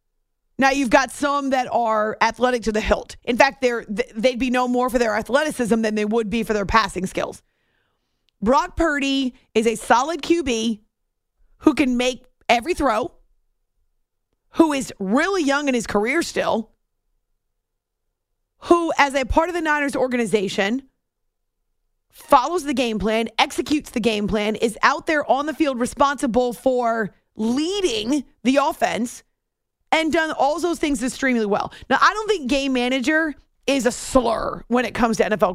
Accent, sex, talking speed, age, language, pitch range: American, female, 160 wpm, 30-49, English, 230-295 Hz